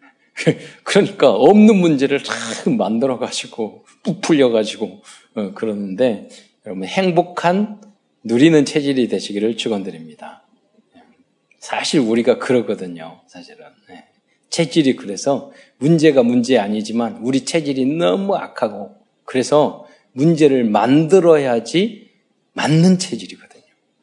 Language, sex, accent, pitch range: Korean, male, native, 130-215 Hz